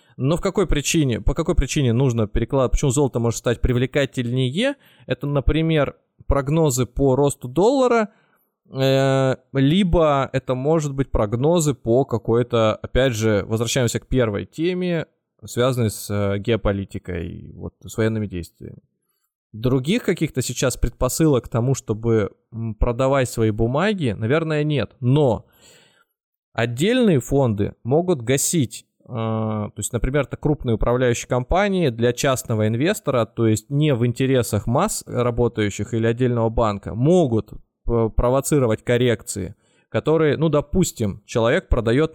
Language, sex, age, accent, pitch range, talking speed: Russian, male, 20-39, native, 115-145 Hz, 120 wpm